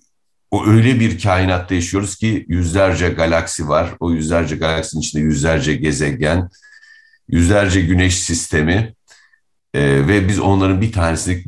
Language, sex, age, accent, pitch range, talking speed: Turkish, male, 50-69, native, 80-100 Hz, 125 wpm